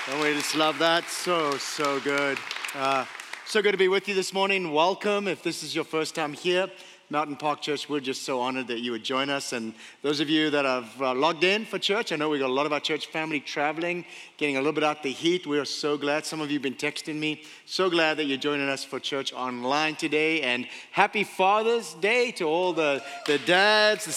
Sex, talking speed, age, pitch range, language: male, 240 wpm, 30-49, 140-185 Hz, English